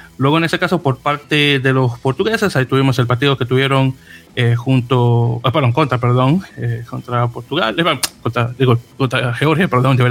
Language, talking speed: Spanish, 190 wpm